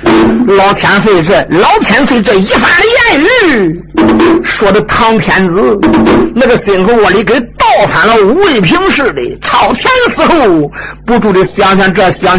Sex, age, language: male, 50-69, Chinese